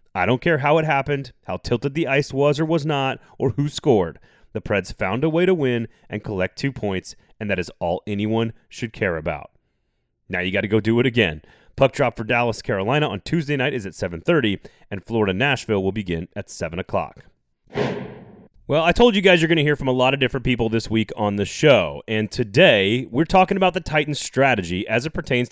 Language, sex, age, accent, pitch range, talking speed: English, male, 30-49, American, 110-160 Hz, 220 wpm